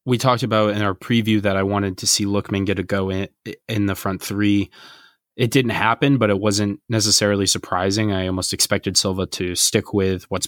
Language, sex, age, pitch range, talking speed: English, male, 20-39, 95-110 Hz, 205 wpm